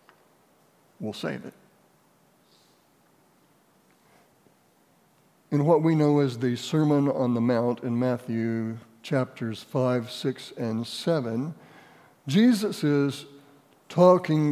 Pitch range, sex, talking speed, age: 125-155 Hz, male, 95 wpm, 60-79